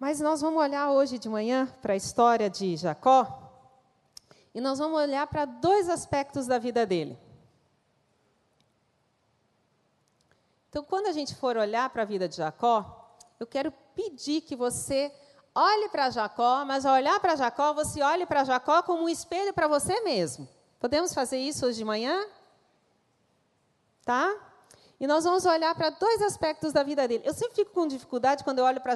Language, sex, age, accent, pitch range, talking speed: Portuguese, female, 40-59, Brazilian, 245-335 Hz, 170 wpm